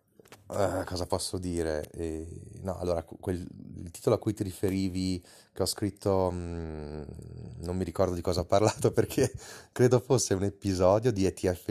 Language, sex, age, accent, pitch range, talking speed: Italian, male, 30-49, native, 85-105 Hz, 150 wpm